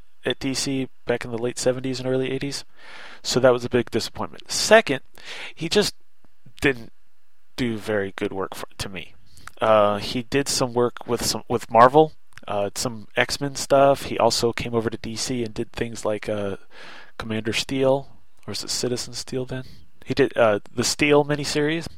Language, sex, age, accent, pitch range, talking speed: English, male, 30-49, American, 110-130 Hz, 175 wpm